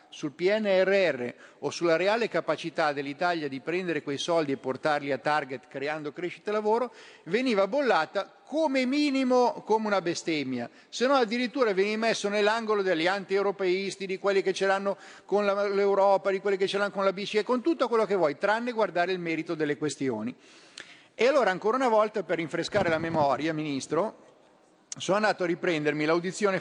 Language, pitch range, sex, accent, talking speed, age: Italian, 150-200 Hz, male, native, 170 wpm, 50-69